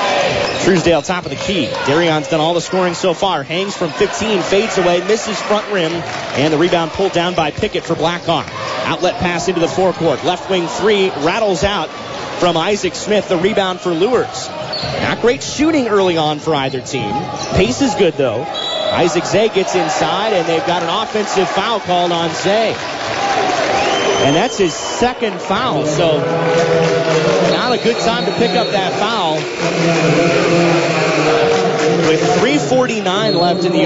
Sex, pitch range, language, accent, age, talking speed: male, 165-200 Hz, English, American, 30-49, 160 wpm